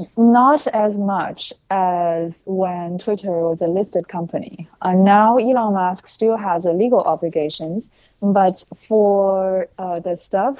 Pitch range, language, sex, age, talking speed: 165-200 Hz, English, female, 20-39, 135 wpm